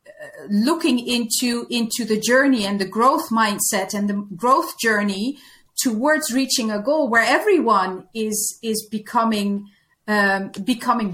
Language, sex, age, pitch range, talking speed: English, female, 30-49, 210-250 Hz, 130 wpm